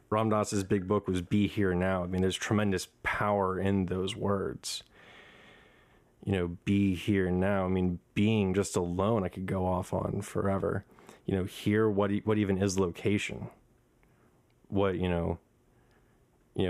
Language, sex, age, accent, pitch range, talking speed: English, male, 30-49, American, 90-100 Hz, 160 wpm